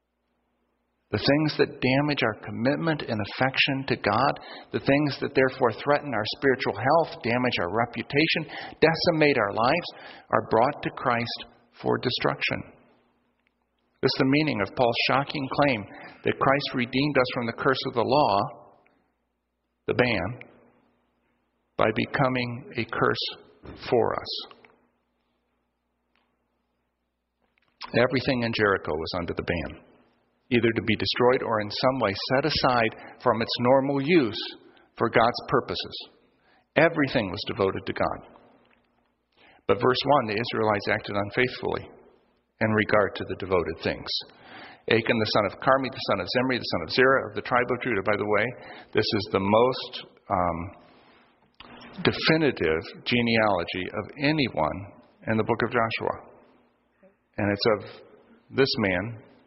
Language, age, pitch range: English, 50-69, 90-135 Hz